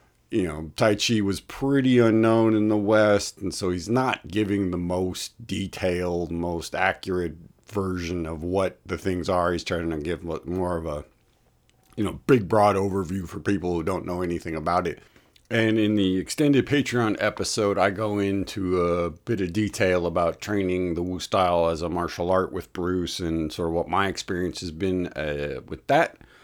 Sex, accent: male, American